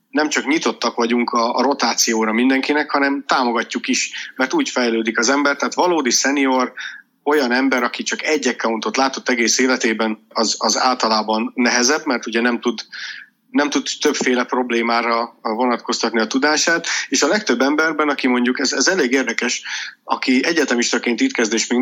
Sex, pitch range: male, 115-145 Hz